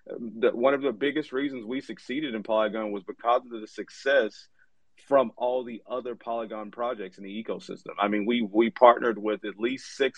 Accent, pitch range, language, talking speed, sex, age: American, 100-120 Hz, English, 190 wpm, male, 30-49